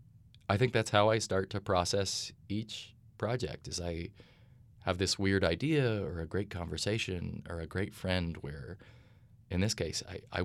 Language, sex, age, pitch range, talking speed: English, male, 30-49, 90-115 Hz, 170 wpm